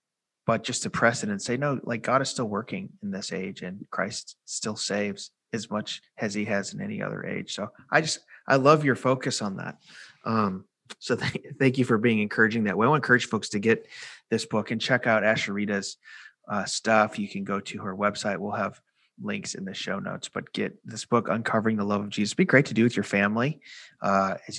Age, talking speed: 30-49, 220 wpm